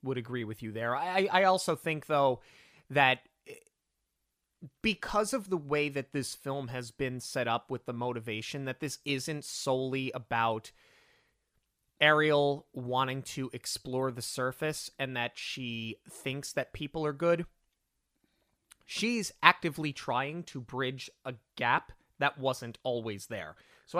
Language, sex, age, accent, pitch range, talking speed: English, male, 30-49, American, 125-155 Hz, 140 wpm